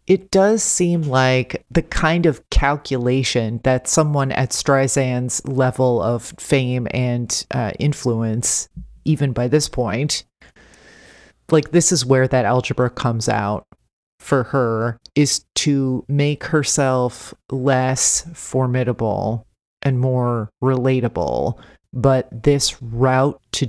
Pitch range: 120-145 Hz